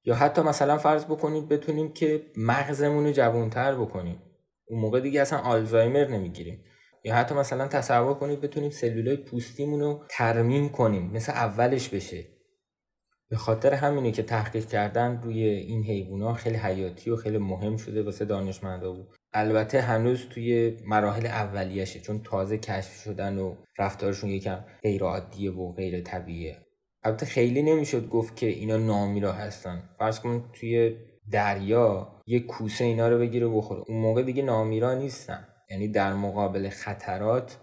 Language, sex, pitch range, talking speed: Persian, male, 100-125 Hz, 145 wpm